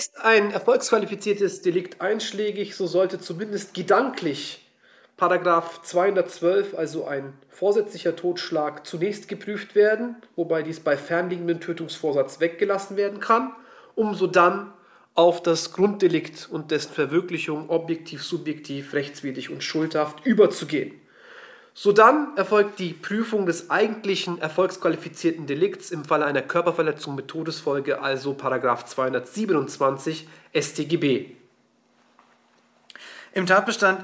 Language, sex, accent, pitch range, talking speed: German, male, German, 155-200 Hz, 105 wpm